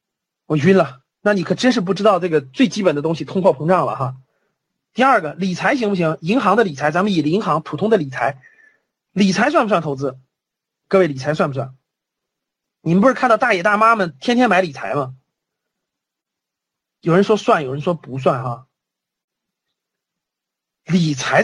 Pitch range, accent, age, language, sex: 155-230 Hz, native, 30-49, Chinese, male